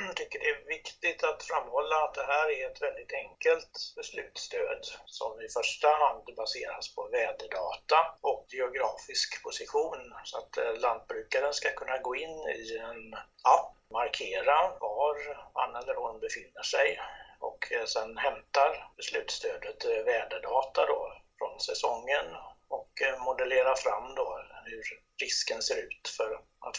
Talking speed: 135 wpm